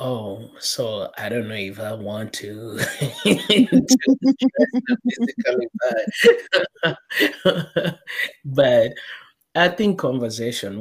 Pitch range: 100-120 Hz